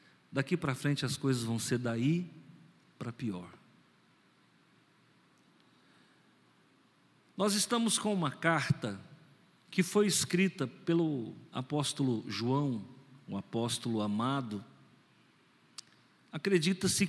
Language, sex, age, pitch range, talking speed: Portuguese, male, 50-69, 135-175 Hz, 90 wpm